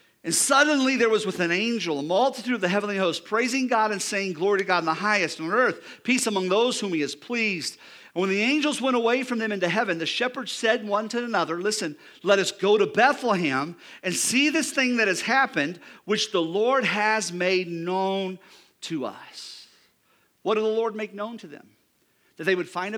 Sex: male